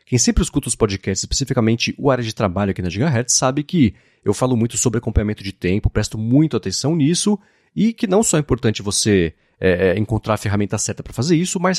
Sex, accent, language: male, Brazilian, Portuguese